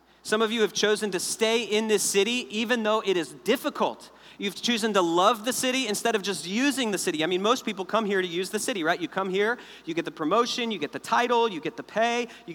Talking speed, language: 260 wpm, English